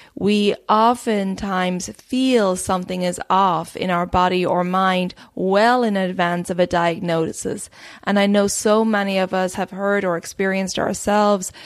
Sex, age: female, 20-39